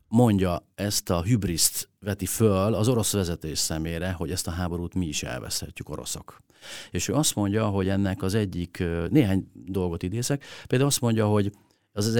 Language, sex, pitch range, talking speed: Hungarian, male, 80-100 Hz, 170 wpm